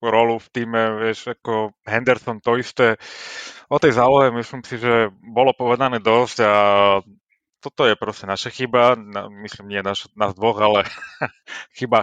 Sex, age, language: male, 30-49, Slovak